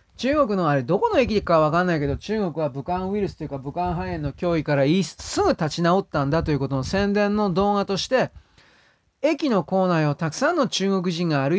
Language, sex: Japanese, male